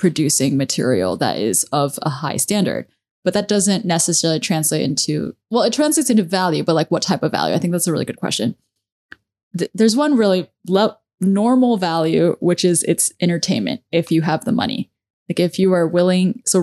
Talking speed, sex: 190 wpm, female